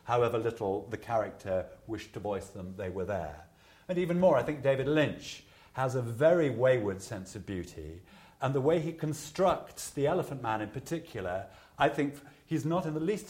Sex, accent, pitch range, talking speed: male, British, 100-150 Hz, 190 wpm